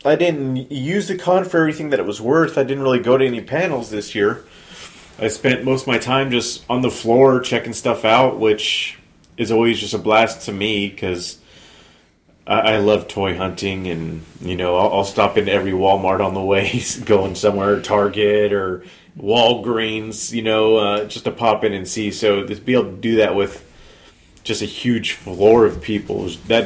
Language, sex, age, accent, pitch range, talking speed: English, male, 30-49, American, 95-120 Hz, 200 wpm